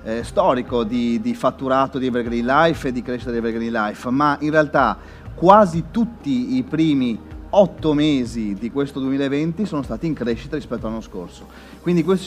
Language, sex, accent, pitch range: Italian, male, native, 125-155 Hz